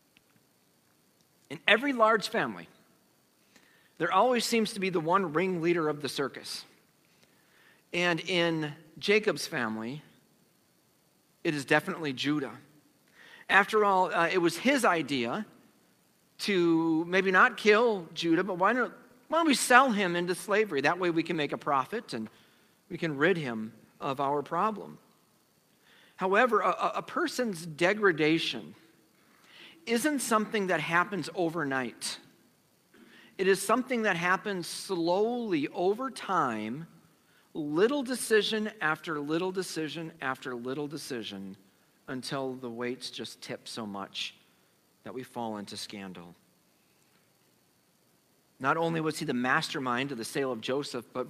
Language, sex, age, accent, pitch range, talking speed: English, male, 50-69, American, 135-195 Hz, 125 wpm